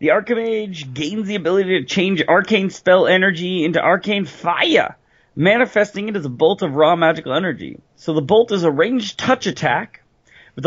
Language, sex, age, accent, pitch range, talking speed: English, male, 30-49, American, 160-210 Hz, 175 wpm